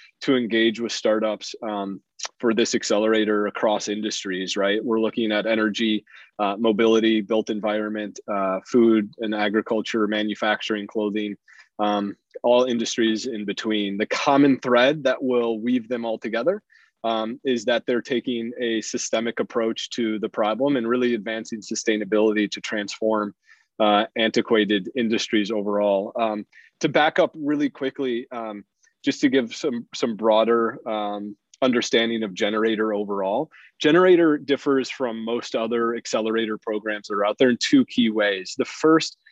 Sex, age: male, 20-39